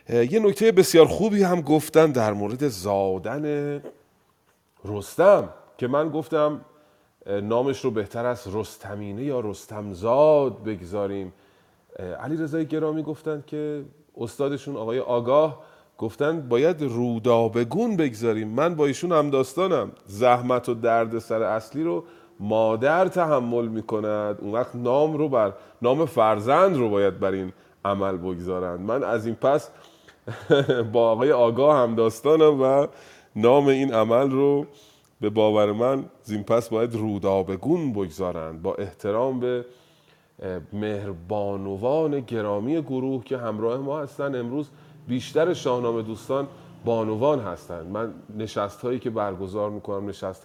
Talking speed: 125 wpm